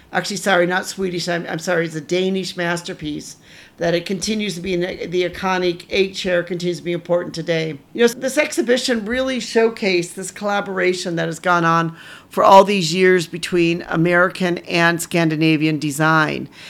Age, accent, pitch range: 50-69, American, 170-205 Hz